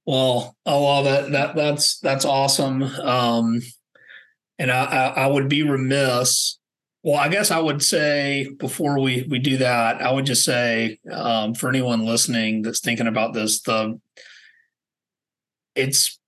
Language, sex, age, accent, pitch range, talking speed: English, male, 40-59, American, 120-140 Hz, 145 wpm